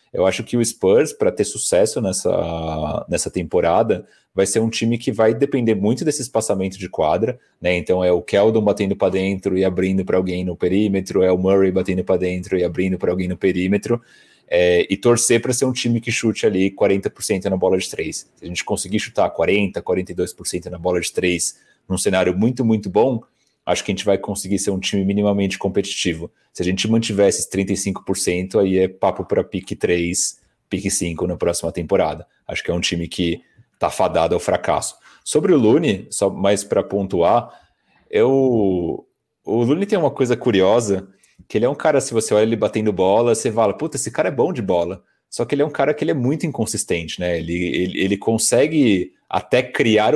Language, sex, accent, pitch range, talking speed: Portuguese, male, Brazilian, 95-115 Hz, 200 wpm